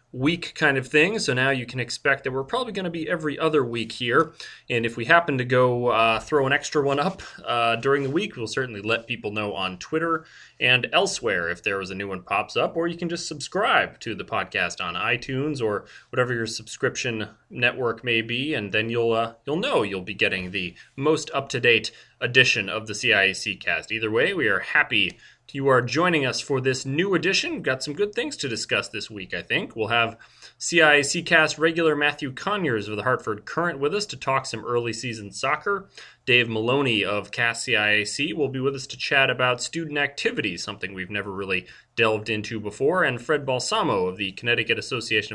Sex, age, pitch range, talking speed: male, 30-49, 115-155 Hz, 210 wpm